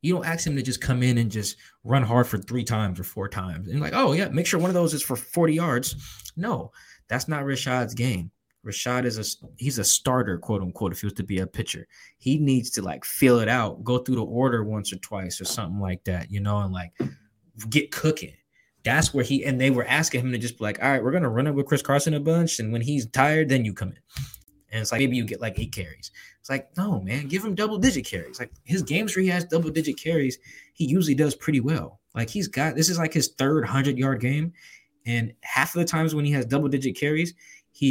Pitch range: 115-155 Hz